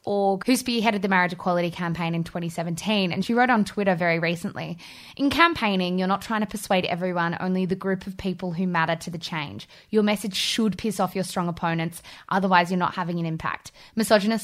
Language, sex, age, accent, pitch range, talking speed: English, female, 20-39, Australian, 175-215 Hz, 205 wpm